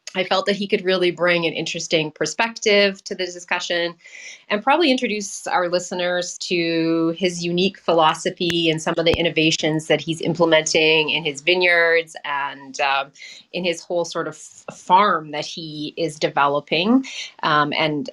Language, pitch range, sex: English, 155-190 Hz, female